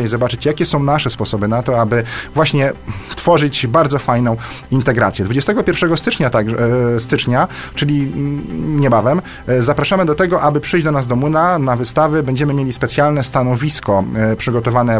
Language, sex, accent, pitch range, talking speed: Polish, male, native, 115-145 Hz, 145 wpm